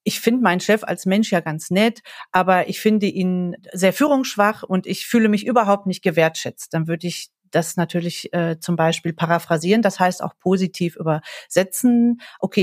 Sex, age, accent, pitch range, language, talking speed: female, 40-59, German, 175-205 Hz, German, 175 wpm